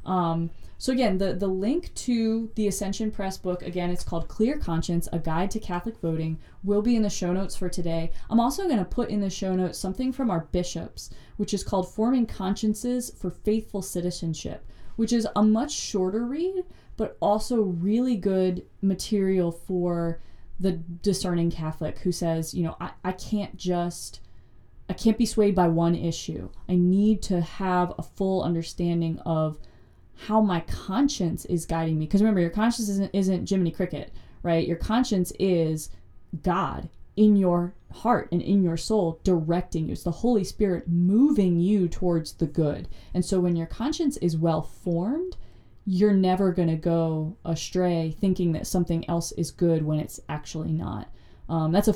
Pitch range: 170-205 Hz